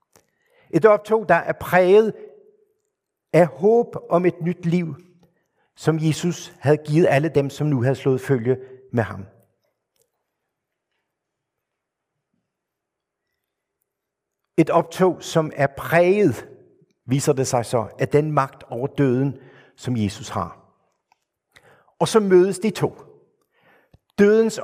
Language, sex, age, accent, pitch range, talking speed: Danish, male, 60-79, native, 125-175 Hz, 115 wpm